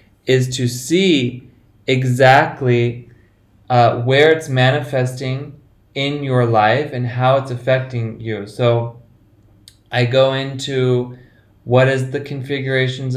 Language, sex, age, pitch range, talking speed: English, male, 20-39, 120-135 Hz, 110 wpm